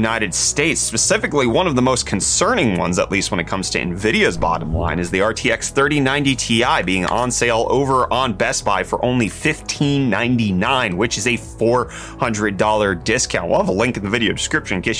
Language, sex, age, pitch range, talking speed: English, male, 30-49, 95-125 Hz, 190 wpm